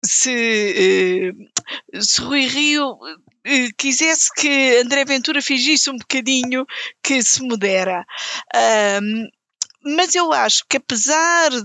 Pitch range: 200-265 Hz